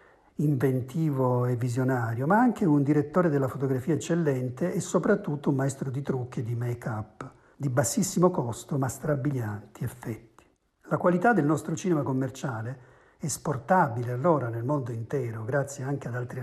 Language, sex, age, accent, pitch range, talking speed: Italian, male, 50-69, native, 125-165 Hz, 145 wpm